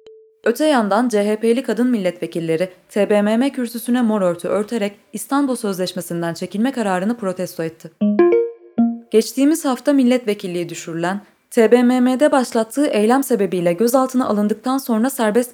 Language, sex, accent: Turkish, female, native